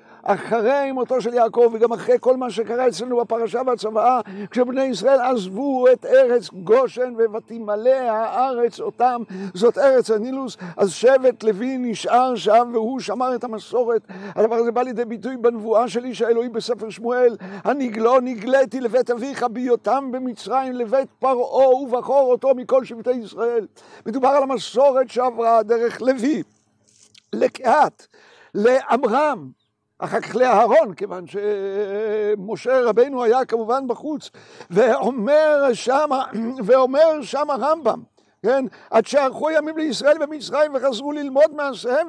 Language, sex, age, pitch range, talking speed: Hebrew, male, 60-79, 230-280 Hz, 125 wpm